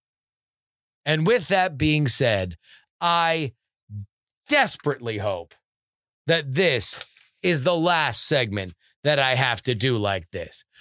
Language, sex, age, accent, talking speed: English, male, 30-49, American, 115 wpm